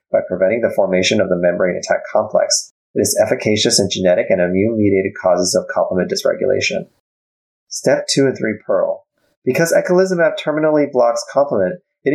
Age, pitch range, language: 30-49, 95-150 Hz, English